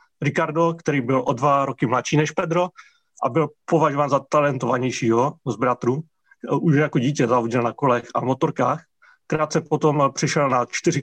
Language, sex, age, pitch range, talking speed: Czech, male, 30-49, 130-155 Hz, 160 wpm